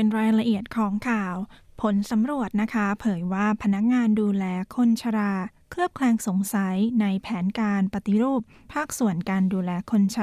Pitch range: 195-230 Hz